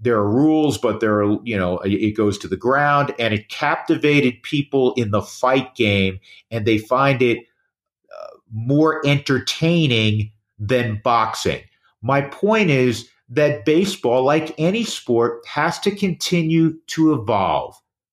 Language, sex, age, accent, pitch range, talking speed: English, male, 50-69, American, 120-165 Hz, 140 wpm